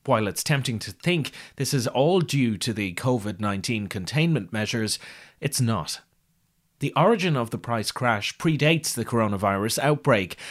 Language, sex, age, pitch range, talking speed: English, male, 30-49, 110-150 Hz, 150 wpm